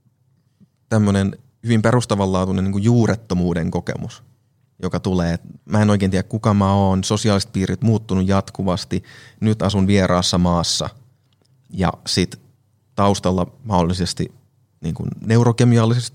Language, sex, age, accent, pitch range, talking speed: Finnish, male, 30-49, native, 95-125 Hz, 110 wpm